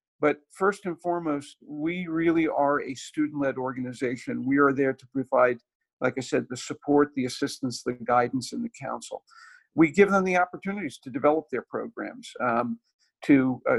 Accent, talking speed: American, 170 wpm